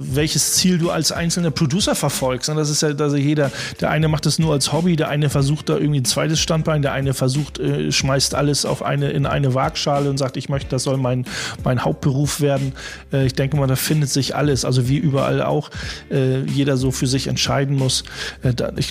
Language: German